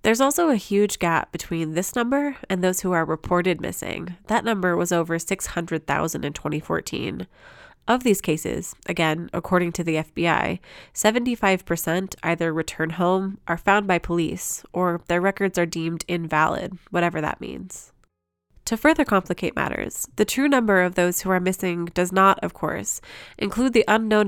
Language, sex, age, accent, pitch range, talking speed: English, female, 20-39, American, 160-195 Hz, 160 wpm